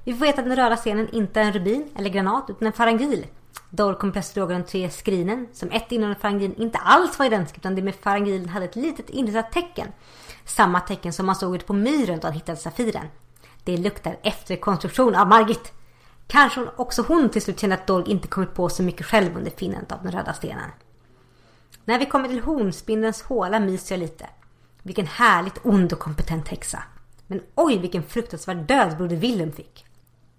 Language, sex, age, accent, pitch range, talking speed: Swedish, female, 30-49, native, 185-245 Hz, 195 wpm